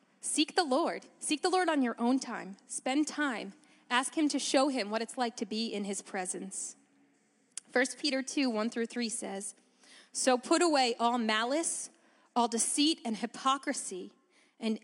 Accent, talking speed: American, 170 wpm